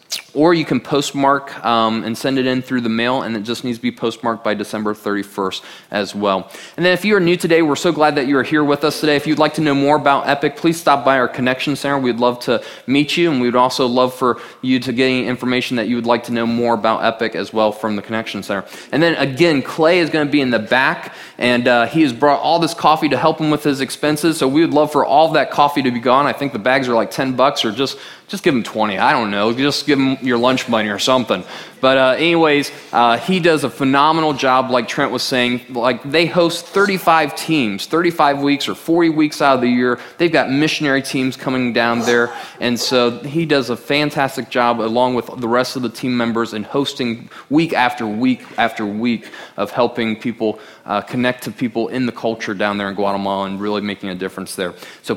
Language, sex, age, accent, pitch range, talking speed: English, male, 20-39, American, 115-150 Hz, 245 wpm